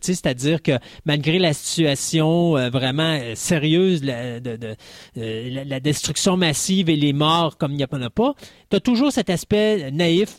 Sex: male